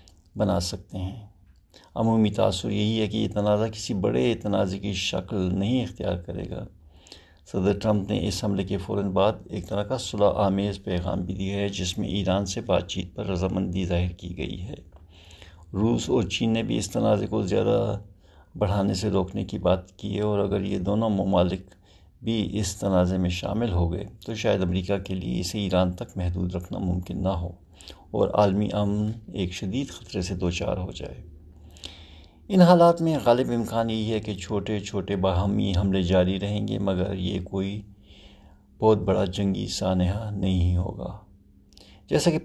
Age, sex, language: 60-79, male, Urdu